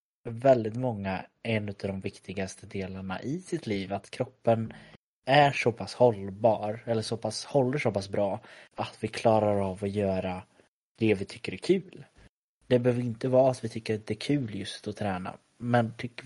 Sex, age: male, 20-39